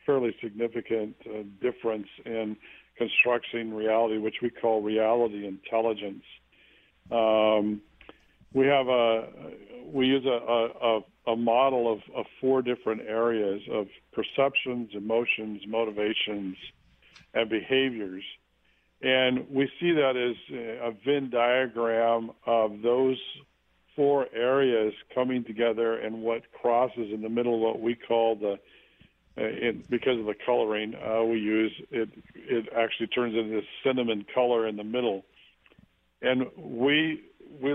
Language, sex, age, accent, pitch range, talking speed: English, male, 50-69, American, 110-125 Hz, 125 wpm